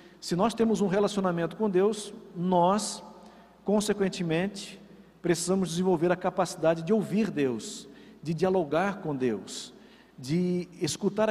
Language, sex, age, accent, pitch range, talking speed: Portuguese, male, 50-69, Brazilian, 180-220 Hz, 115 wpm